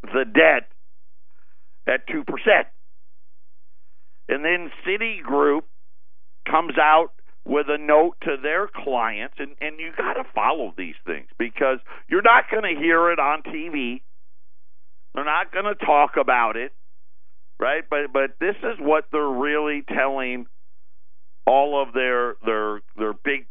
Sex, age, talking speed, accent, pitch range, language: male, 50-69, 135 wpm, American, 145-230 Hz, English